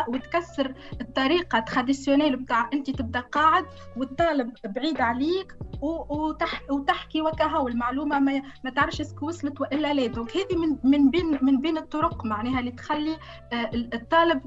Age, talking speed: 20-39, 115 wpm